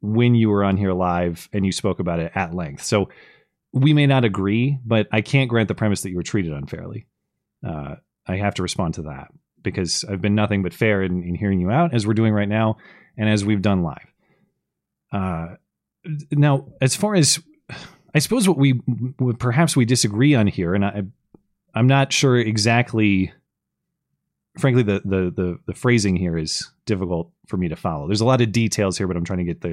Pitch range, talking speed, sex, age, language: 95-125 Hz, 205 wpm, male, 30-49, English